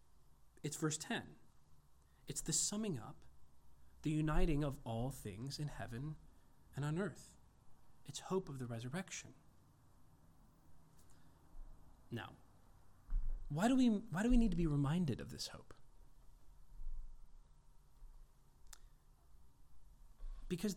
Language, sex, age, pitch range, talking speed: English, male, 30-49, 115-180 Hz, 105 wpm